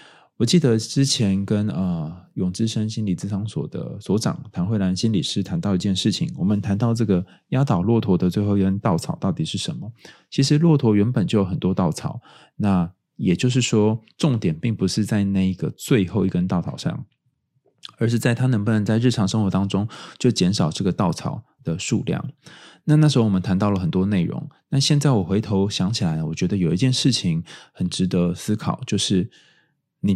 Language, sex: Chinese, male